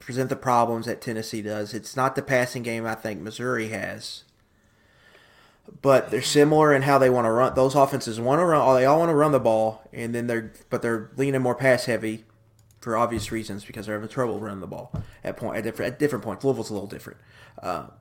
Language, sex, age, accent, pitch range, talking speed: English, male, 30-49, American, 110-130 Hz, 220 wpm